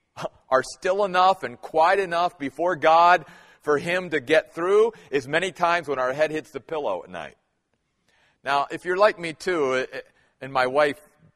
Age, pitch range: 40-59, 145-205 Hz